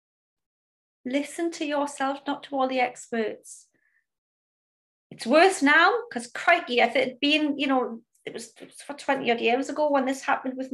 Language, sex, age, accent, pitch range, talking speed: English, female, 30-49, British, 230-280 Hz, 170 wpm